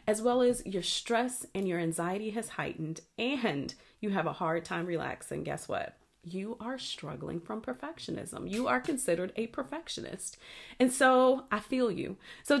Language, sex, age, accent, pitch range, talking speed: English, female, 40-59, American, 175-255 Hz, 165 wpm